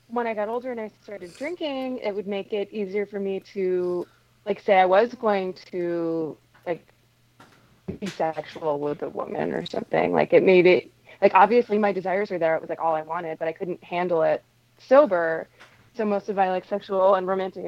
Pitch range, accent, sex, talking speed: 170-220 Hz, American, female, 205 wpm